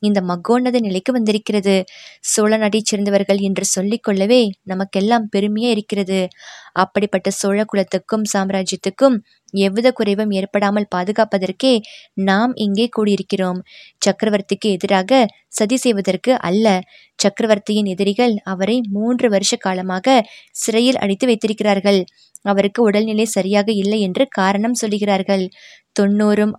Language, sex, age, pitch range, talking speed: Tamil, female, 20-39, 195-230 Hz, 95 wpm